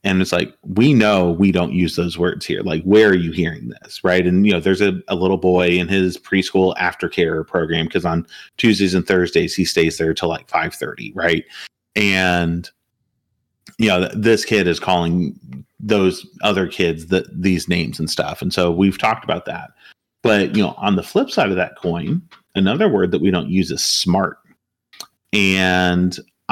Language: English